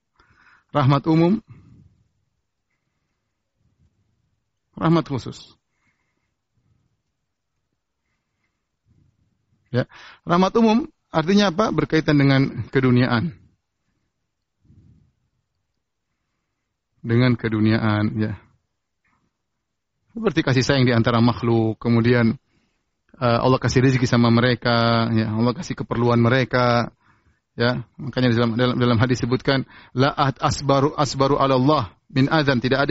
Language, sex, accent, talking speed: Indonesian, male, native, 85 wpm